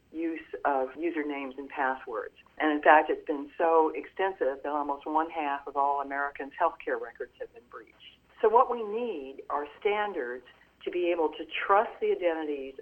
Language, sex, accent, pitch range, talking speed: English, female, American, 150-210 Hz, 175 wpm